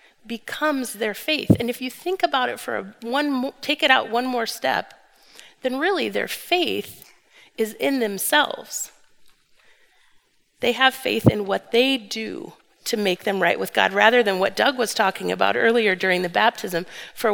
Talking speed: 175 wpm